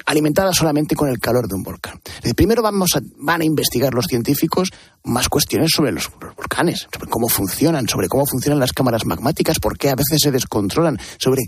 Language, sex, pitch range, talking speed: Spanish, male, 120-160 Hz, 200 wpm